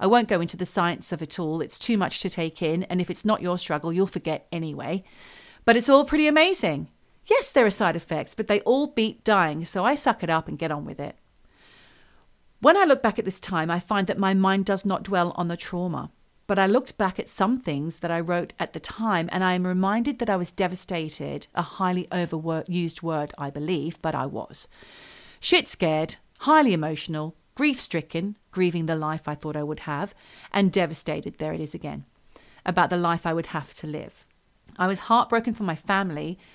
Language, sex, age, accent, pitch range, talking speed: English, female, 40-59, British, 165-210 Hz, 215 wpm